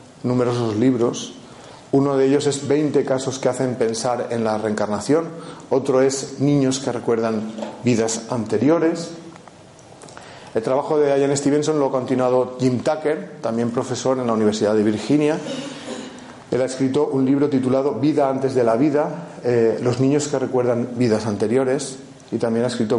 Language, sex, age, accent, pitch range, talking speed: Spanish, male, 40-59, Spanish, 115-135 Hz, 155 wpm